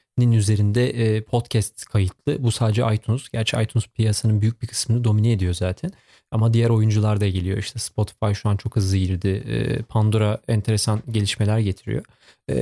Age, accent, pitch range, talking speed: 40-59, native, 110-140 Hz, 145 wpm